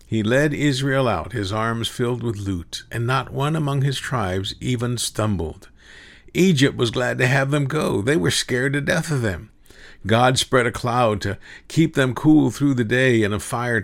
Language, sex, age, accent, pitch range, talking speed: English, male, 50-69, American, 105-140 Hz, 195 wpm